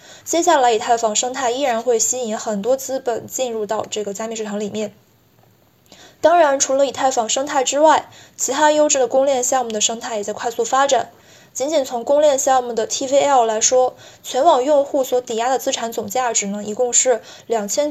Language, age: Chinese, 20-39